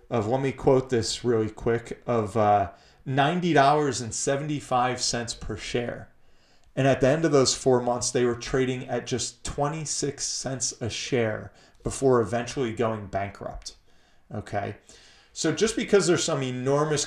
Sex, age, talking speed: male, 30-49, 140 wpm